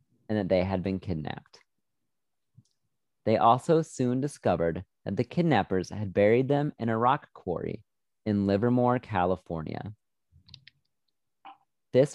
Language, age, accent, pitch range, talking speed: English, 30-49, American, 95-125 Hz, 120 wpm